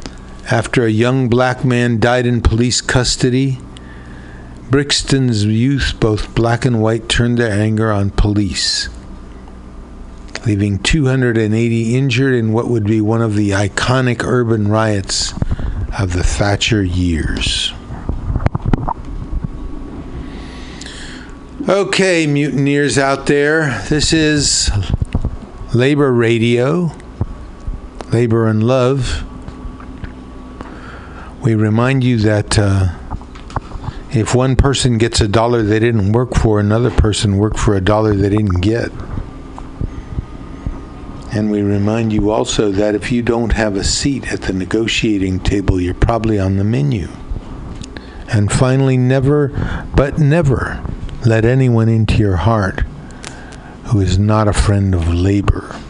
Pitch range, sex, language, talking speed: 95-125 Hz, male, English, 120 wpm